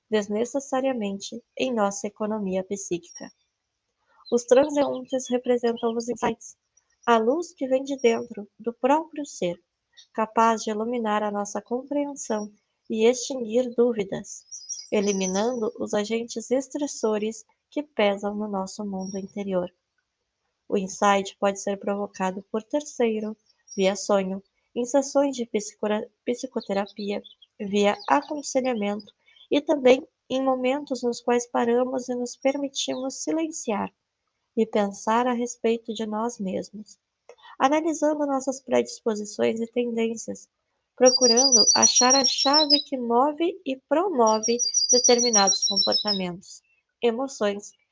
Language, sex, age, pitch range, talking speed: Portuguese, female, 20-39, 210-260 Hz, 110 wpm